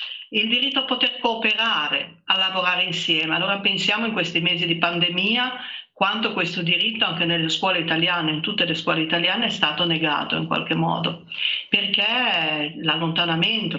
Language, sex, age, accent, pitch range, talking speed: Italian, female, 50-69, native, 165-205 Hz, 150 wpm